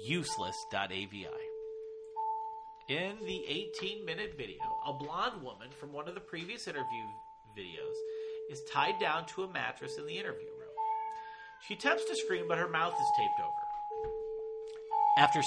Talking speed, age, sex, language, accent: 140 wpm, 40-59, male, English, American